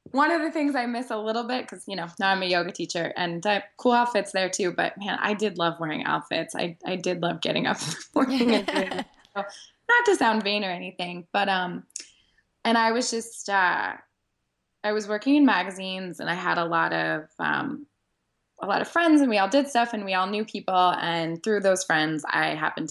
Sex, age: female, 20-39